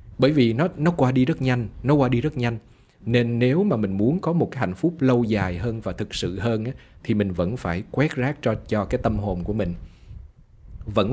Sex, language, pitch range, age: male, Vietnamese, 95-130 Hz, 20-39